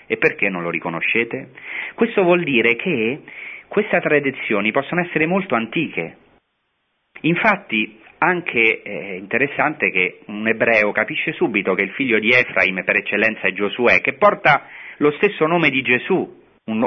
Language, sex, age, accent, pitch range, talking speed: Italian, male, 40-59, native, 100-135 Hz, 145 wpm